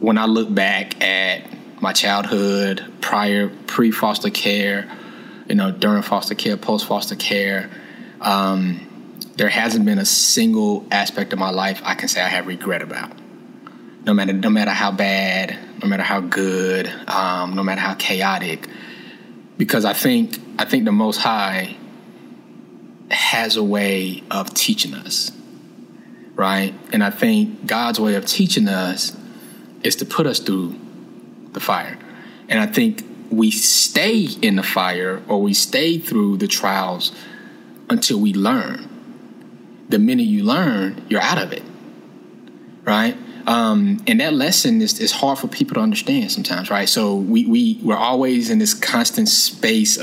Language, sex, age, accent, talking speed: English, male, 20-39, American, 150 wpm